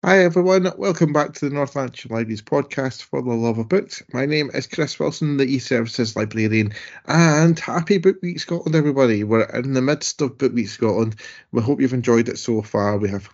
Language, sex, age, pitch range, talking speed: English, male, 30-49, 100-130 Hz, 205 wpm